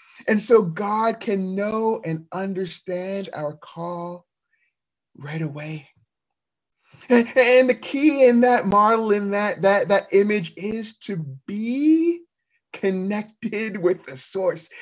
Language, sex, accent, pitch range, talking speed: English, male, American, 180-240 Hz, 120 wpm